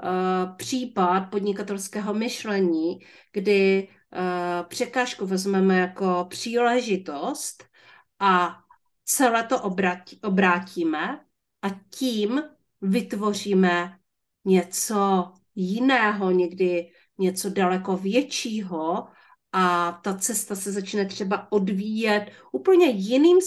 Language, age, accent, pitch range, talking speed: Czech, 40-59, native, 190-230 Hz, 75 wpm